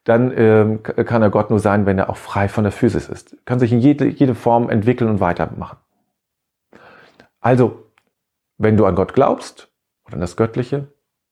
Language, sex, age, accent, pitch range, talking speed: German, male, 40-59, German, 100-125 Hz, 185 wpm